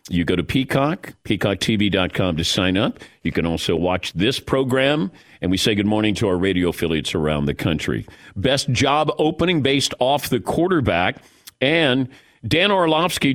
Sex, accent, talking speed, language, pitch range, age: male, American, 160 wpm, English, 105-145 Hz, 50-69